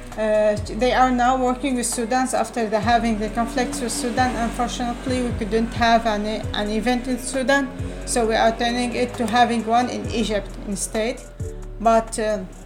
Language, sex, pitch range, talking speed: English, female, 215-250 Hz, 160 wpm